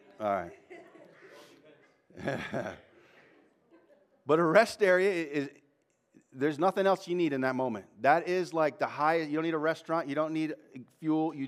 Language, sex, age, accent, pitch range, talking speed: English, male, 40-59, American, 145-185 Hz, 155 wpm